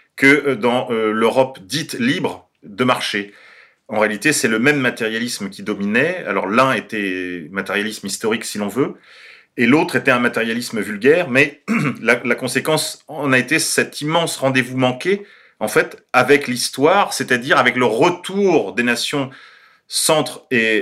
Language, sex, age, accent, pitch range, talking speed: French, male, 40-59, French, 120-145 Hz, 150 wpm